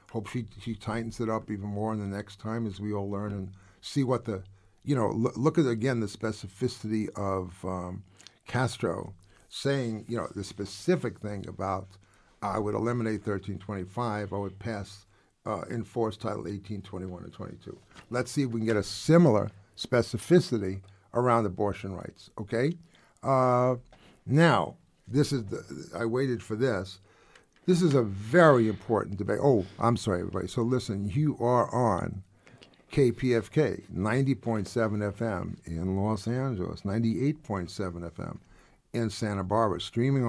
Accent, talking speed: American, 150 wpm